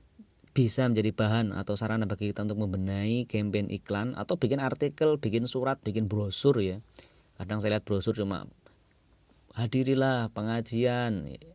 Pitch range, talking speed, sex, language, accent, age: 95-115 Hz, 135 wpm, male, English, Indonesian, 30-49